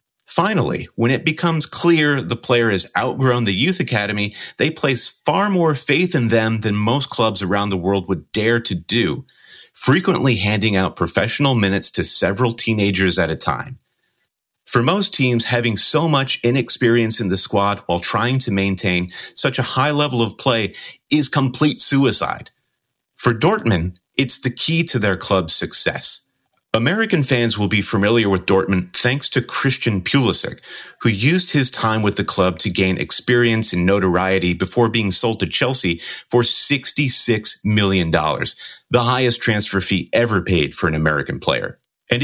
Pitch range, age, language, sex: 95-125 Hz, 30-49, English, male